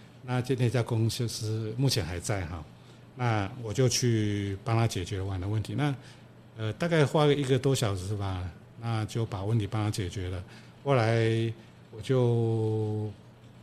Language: Chinese